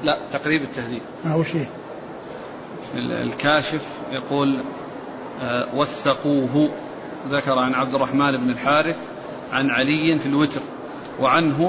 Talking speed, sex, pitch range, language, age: 85 wpm, male, 145-170 Hz, Arabic, 40-59